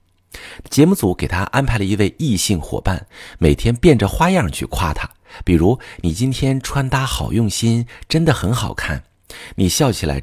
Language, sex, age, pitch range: Chinese, male, 50-69, 80-120 Hz